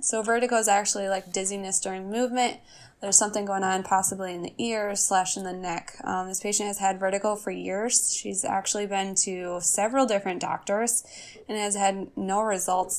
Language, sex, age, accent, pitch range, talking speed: English, female, 10-29, American, 190-215 Hz, 185 wpm